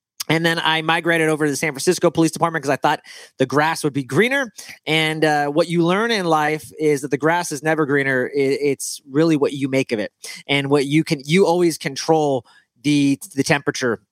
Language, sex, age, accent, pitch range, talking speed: English, male, 30-49, American, 145-180 Hz, 210 wpm